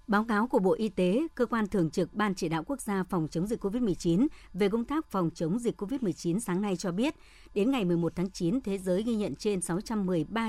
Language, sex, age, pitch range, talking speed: Vietnamese, male, 60-79, 180-215 Hz, 235 wpm